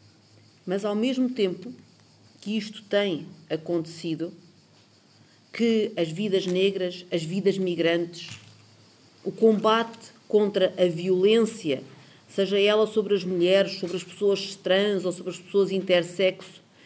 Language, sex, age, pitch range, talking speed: Portuguese, female, 40-59, 160-195 Hz, 120 wpm